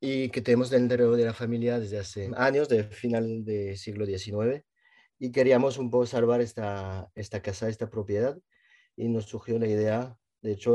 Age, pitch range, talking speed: 30-49, 105-130 Hz, 180 wpm